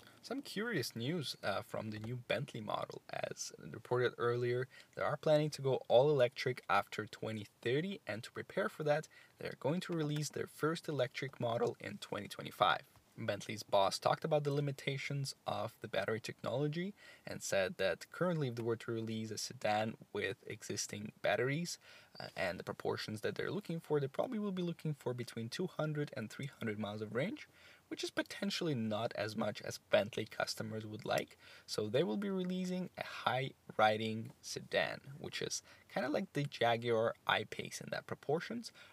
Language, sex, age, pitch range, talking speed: English, male, 10-29, 115-160 Hz, 175 wpm